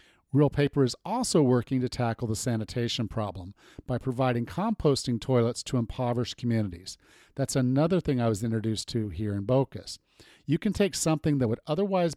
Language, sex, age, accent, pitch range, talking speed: English, male, 50-69, American, 115-155 Hz, 170 wpm